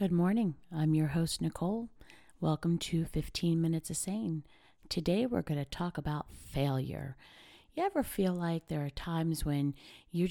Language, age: English, 40-59